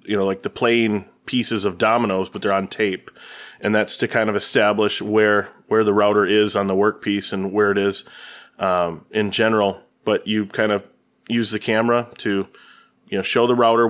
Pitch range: 100-110 Hz